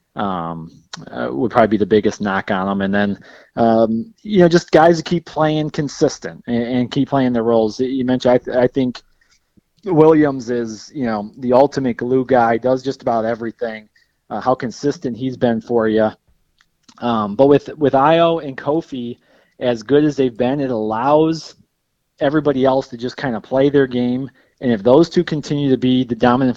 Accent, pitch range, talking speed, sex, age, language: American, 115-145 Hz, 190 wpm, male, 30-49, English